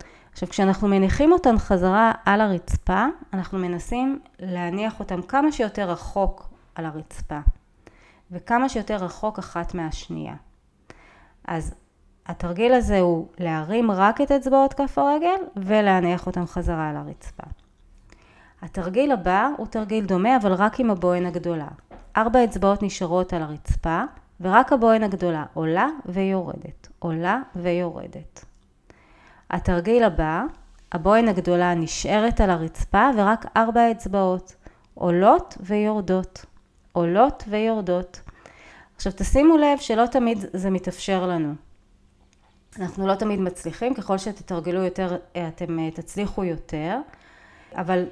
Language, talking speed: Hebrew, 115 wpm